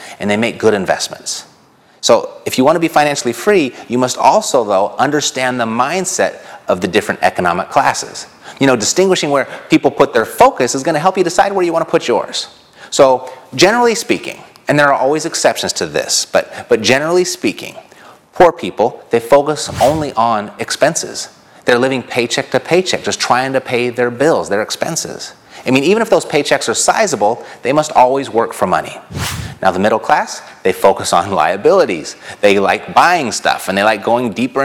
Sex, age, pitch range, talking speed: male, 30-49, 120-155 Hz, 190 wpm